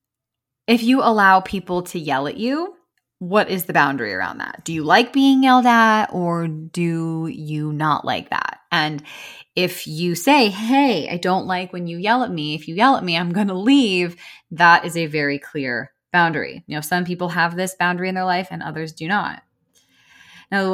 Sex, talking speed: female, 200 wpm